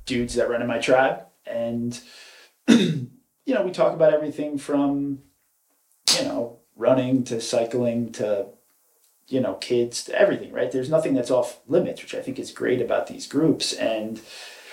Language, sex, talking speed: English, male, 165 wpm